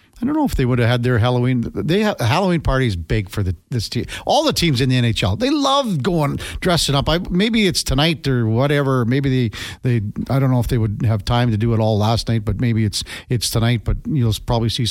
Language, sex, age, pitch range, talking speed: English, male, 50-69, 115-165 Hz, 255 wpm